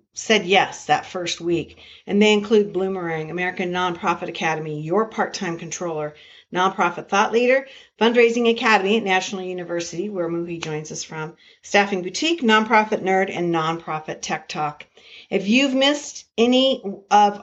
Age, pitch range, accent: 50-69, 175-240 Hz, American